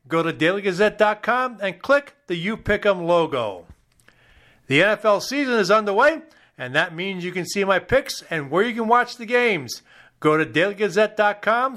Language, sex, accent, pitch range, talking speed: English, male, American, 165-240 Hz, 165 wpm